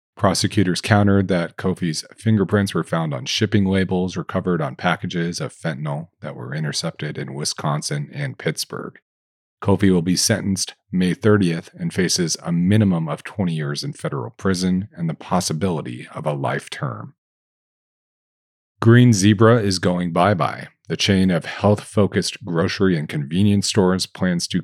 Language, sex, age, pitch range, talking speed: English, male, 40-59, 80-105 Hz, 150 wpm